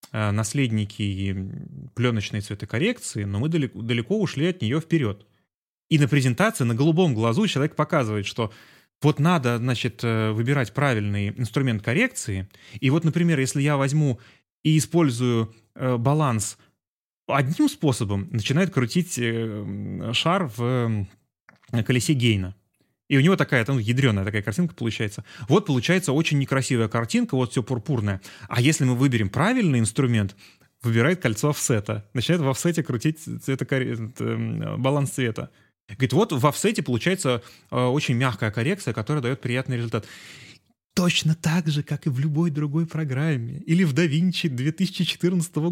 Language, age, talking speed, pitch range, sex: Russian, 20-39, 130 wpm, 115-155 Hz, male